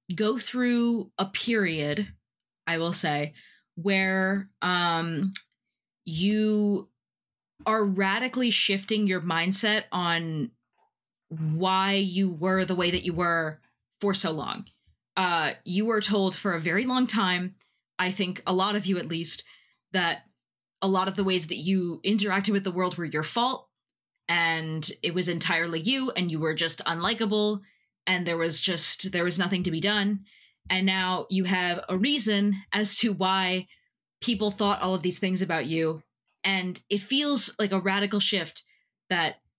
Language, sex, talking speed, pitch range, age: English, female, 160 wpm, 175-210 Hz, 20-39